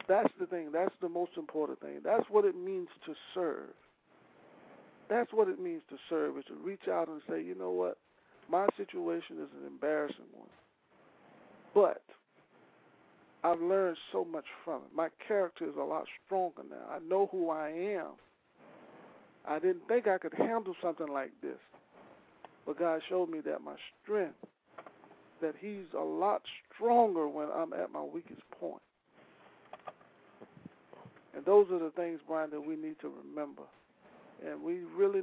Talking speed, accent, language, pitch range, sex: 160 wpm, American, English, 155-225 Hz, male